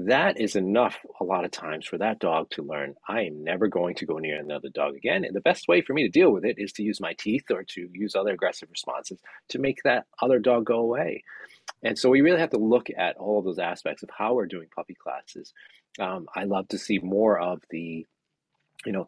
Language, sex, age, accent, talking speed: Ukrainian, male, 30-49, American, 245 wpm